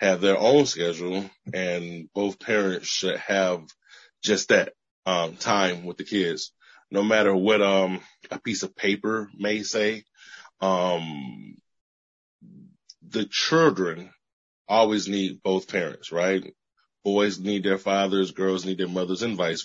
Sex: male